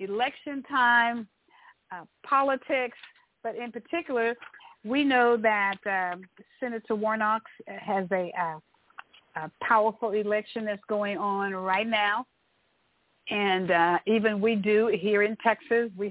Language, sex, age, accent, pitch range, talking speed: English, female, 50-69, American, 195-235 Hz, 120 wpm